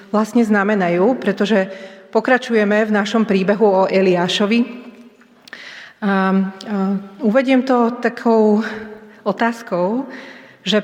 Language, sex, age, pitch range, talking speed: Slovak, female, 30-49, 200-230 Hz, 80 wpm